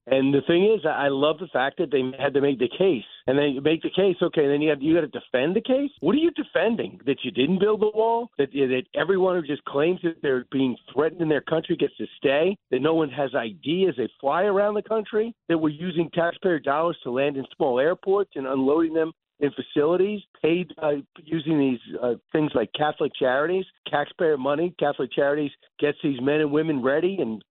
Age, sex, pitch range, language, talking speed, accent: 50-69, male, 145-180 Hz, English, 225 wpm, American